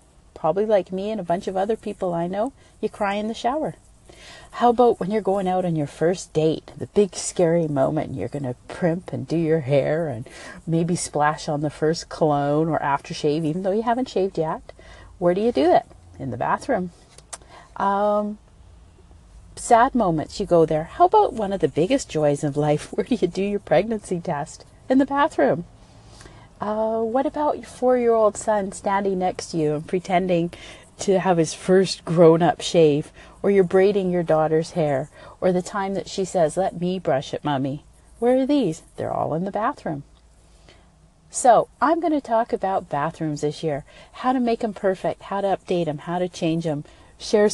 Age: 40-59